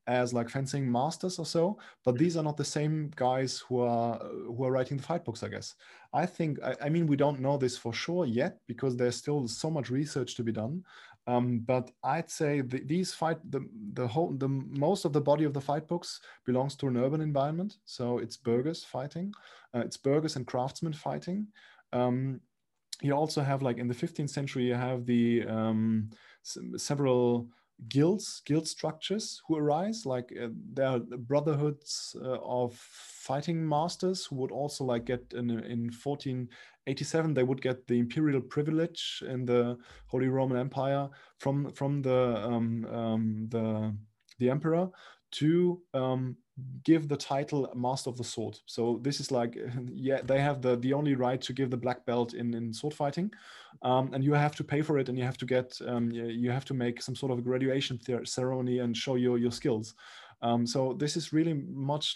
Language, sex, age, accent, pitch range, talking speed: English, male, 20-39, German, 125-150 Hz, 190 wpm